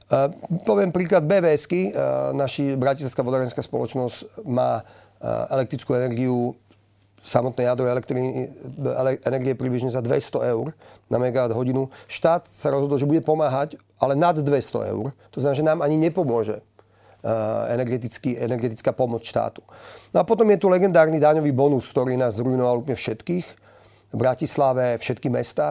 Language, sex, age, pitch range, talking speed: Slovak, male, 40-59, 115-145 Hz, 140 wpm